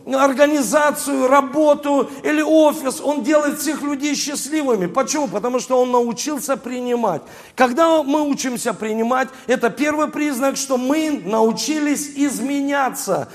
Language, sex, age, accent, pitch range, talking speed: Russian, male, 40-59, native, 200-270 Hz, 115 wpm